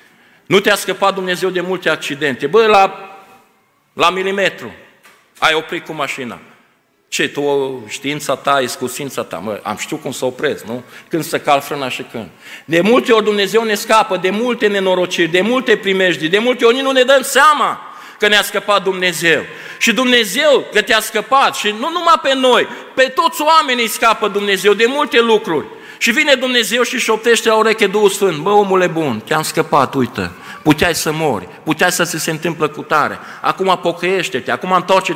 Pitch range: 145-210 Hz